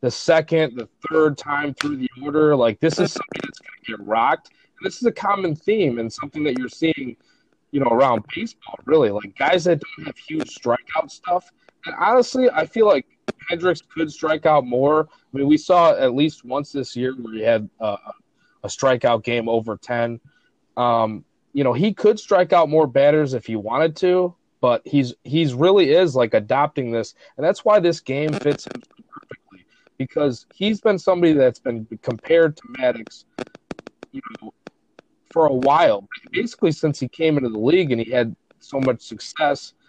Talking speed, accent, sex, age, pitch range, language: 185 wpm, American, male, 20-39, 125-185 Hz, English